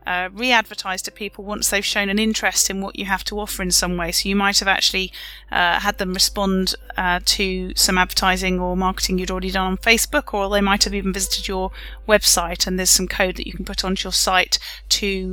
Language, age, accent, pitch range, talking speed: English, 30-49, British, 185-210 Hz, 225 wpm